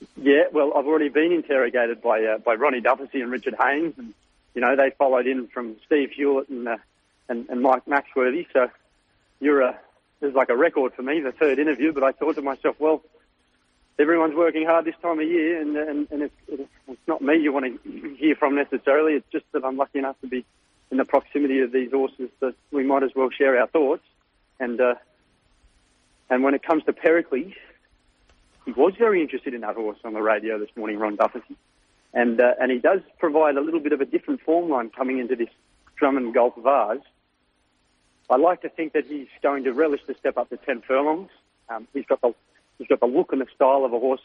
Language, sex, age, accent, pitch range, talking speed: English, male, 30-49, Australian, 120-150 Hz, 220 wpm